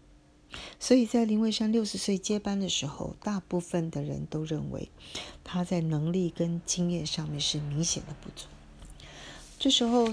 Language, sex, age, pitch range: Chinese, female, 40-59, 155-190 Hz